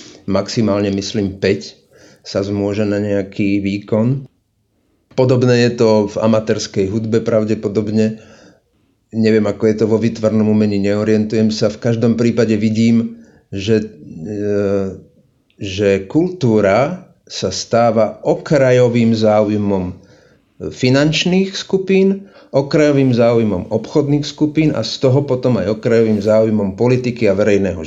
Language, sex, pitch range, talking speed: Slovak, male, 105-135 Hz, 110 wpm